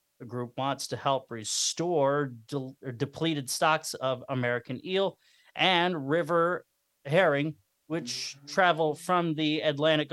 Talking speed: 115 wpm